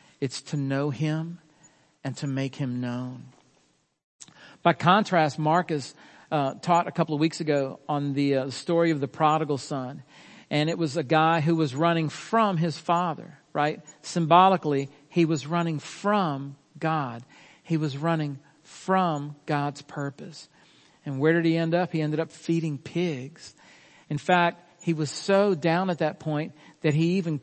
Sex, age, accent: male, 50-69, American